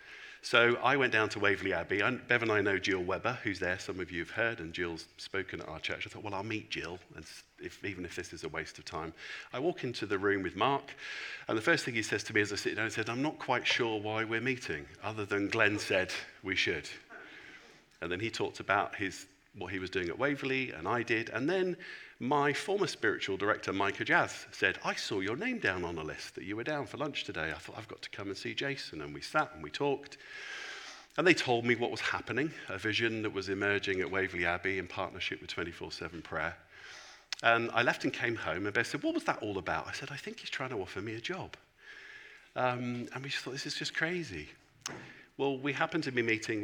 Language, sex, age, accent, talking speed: English, male, 50-69, British, 245 wpm